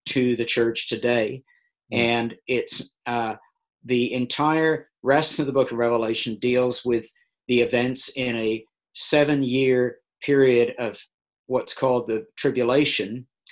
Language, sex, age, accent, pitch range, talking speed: English, male, 50-69, American, 115-135 Hz, 125 wpm